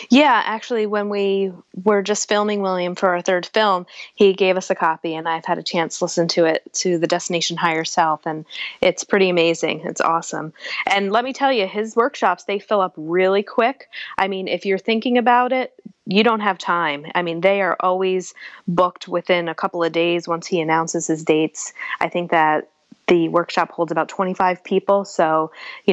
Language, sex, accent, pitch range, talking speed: English, female, American, 170-205 Hz, 200 wpm